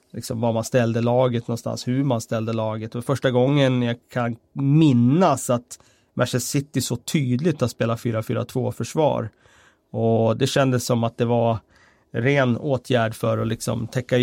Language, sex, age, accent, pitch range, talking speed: Swedish, male, 30-49, native, 115-135 Hz, 160 wpm